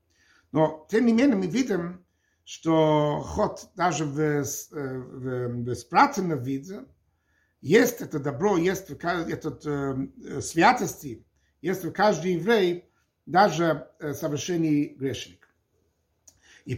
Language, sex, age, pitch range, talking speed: Russian, male, 60-79, 150-215 Hz, 90 wpm